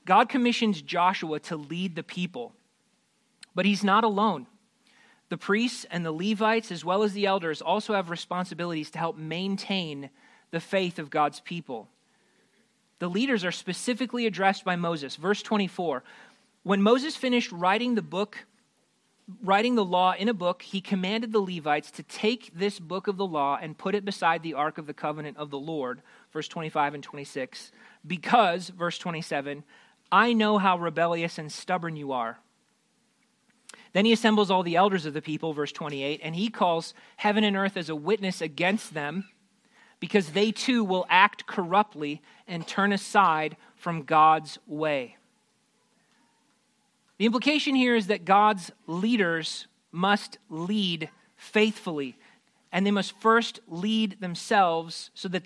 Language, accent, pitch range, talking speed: English, American, 170-220 Hz, 155 wpm